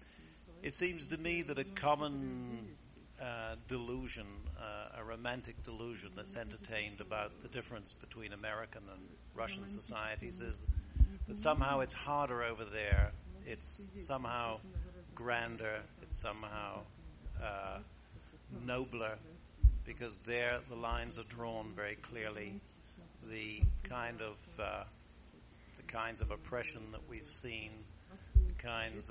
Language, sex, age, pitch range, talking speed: English, male, 60-79, 100-120 Hz, 115 wpm